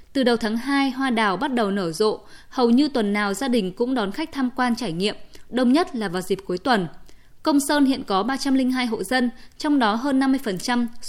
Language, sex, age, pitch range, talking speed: Vietnamese, female, 20-39, 205-265 Hz, 220 wpm